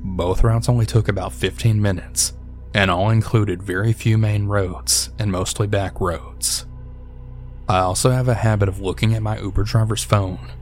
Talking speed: 170 wpm